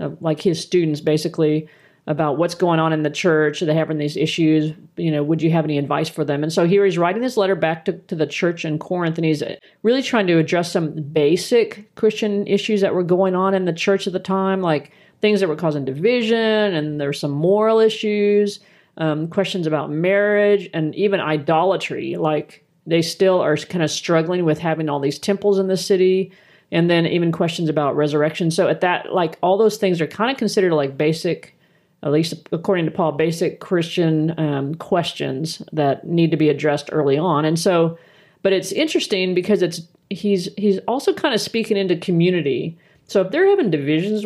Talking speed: 200 wpm